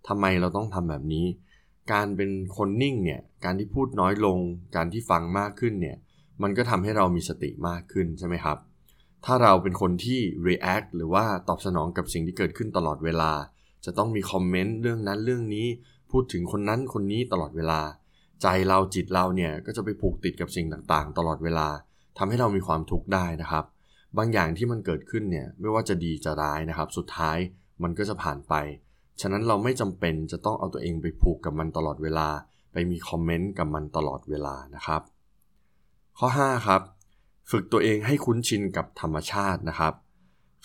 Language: Thai